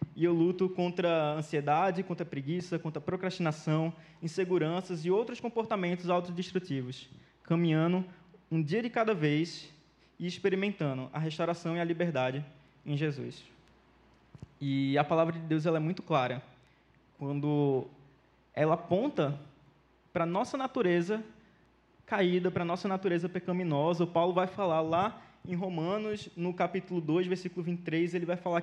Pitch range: 155-190 Hz